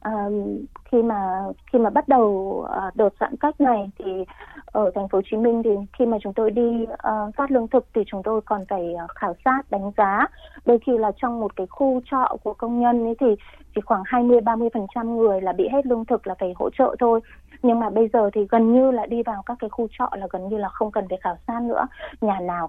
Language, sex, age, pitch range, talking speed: Vietnamese, female, 20-39, 200-250 Hz, 240 wpm